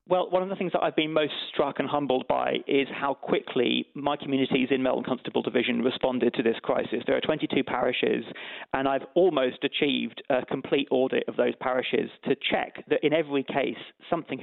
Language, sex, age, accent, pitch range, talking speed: English, male, 40-59, British, 130-160 Hz, 195 wpm